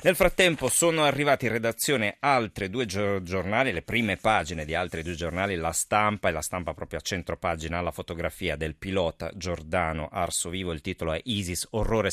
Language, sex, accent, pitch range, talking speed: Italian, male, native, 85-115 Hz, 185 wpm